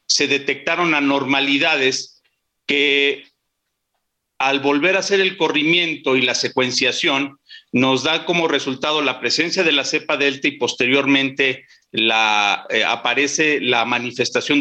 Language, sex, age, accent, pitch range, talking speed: Spanish, male, 50-69, Mexican, 130-155 Hz, 125 wpm